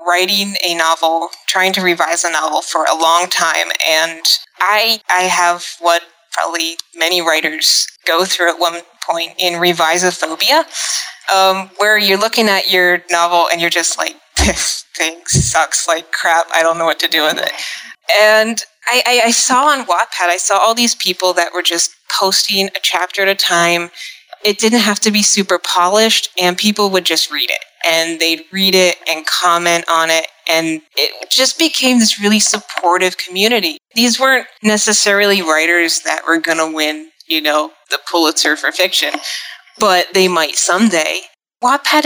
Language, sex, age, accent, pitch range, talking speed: English, female, 20-39, American, 165-210 Hz, 175 wpm